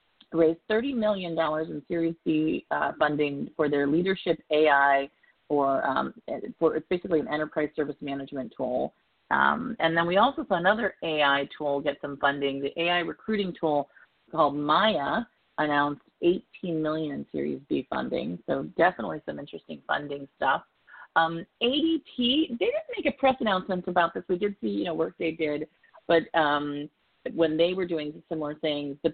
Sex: female